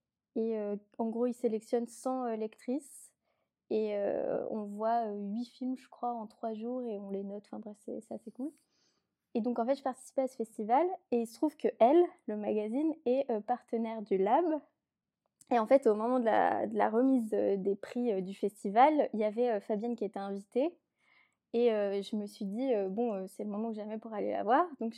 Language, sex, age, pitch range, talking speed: French, female, 20-39, 210-250 Hz, 210 wpm